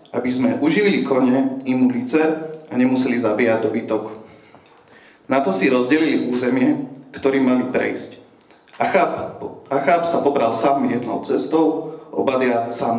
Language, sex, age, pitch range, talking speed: Slovak, male, 40-59, 125-170 Hz, 125 wpm